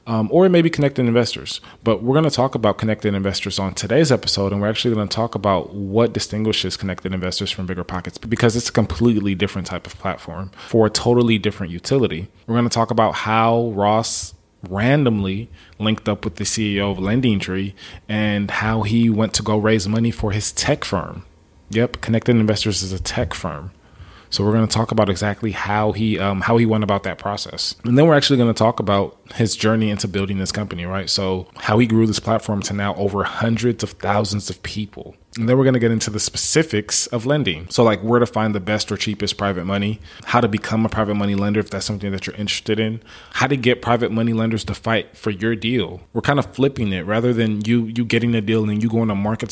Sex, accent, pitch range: male, American, 100-115 Hz